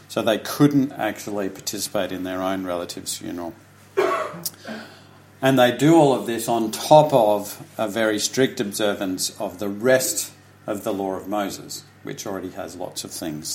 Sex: male